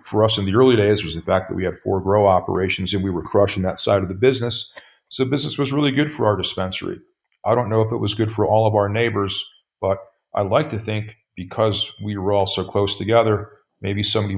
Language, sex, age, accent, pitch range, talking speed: English, male, 40-59, American, 95-120 Hz, 240 wpm